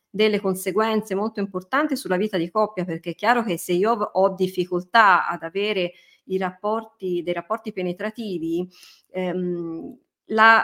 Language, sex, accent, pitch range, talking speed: Italian, female, native, 175-210 Hz, 130 wpm